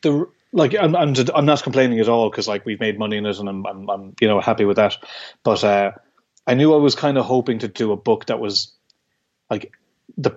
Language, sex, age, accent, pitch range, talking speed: English, male, 30-49, Irish, 105-125 Hz, 245 wpm